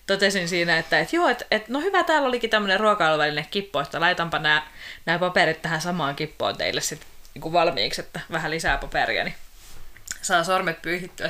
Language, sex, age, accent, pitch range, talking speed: Finnish, female, 20-39, native, 175-285 Hz, 175 wpm